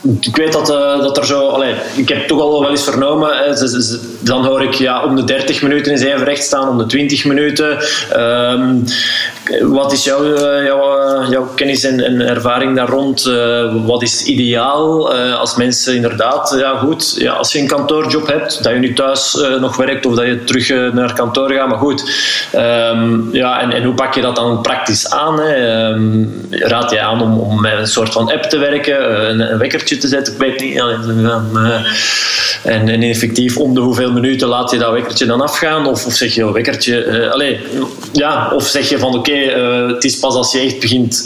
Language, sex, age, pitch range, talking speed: Dutch, male, 20-39, 120-140 Hz, 215 wpm